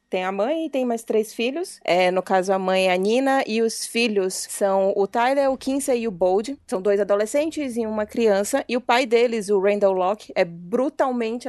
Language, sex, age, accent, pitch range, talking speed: Portuguese, female, 20-39, Brazilian, 190-235 Hz, 215 wpm